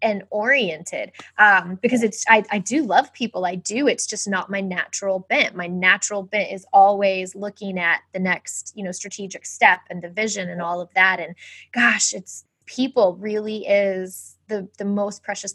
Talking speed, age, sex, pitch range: 185 wpm, 20-39, female, 190-225 Hz